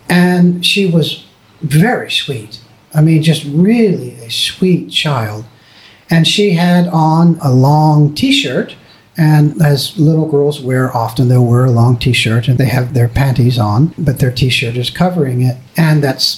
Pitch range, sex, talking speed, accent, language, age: 125-175 Hz, male, 160 wpm, American, English, 50-69